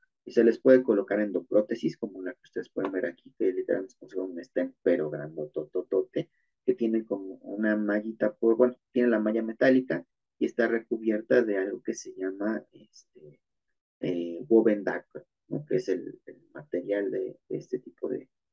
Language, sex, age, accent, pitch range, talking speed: Spanish, male, 30-49, Mexican, 105-135 Hz, 180 wpm